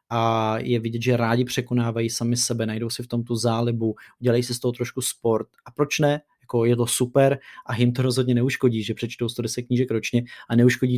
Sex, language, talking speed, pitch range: male, Czech, 215 wpm, 110-125 Hz